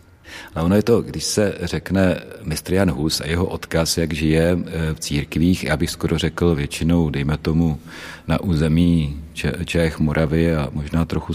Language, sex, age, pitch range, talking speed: Czech, male, 40-59, 80-85 Hz, 165 wpm